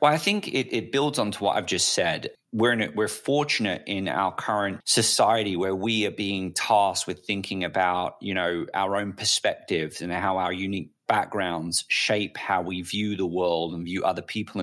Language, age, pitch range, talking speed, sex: English, 30-49, 95-130 Hz, 200 wpm, male